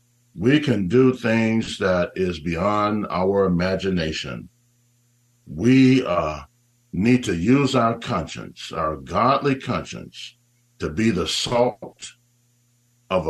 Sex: male